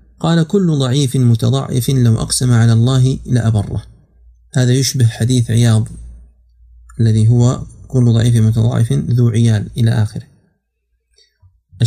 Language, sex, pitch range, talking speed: Arabic, male, 115-140 Hz, 110 wpm